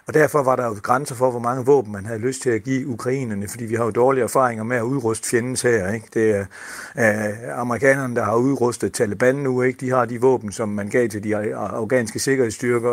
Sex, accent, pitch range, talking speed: male, native, 110-135 Hz, 230 wpm